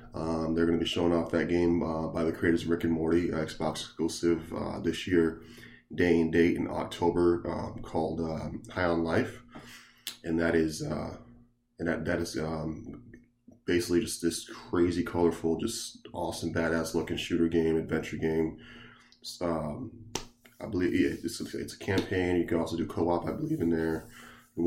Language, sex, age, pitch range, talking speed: English, male, 20-39, 80-90 Hz, 180 wpm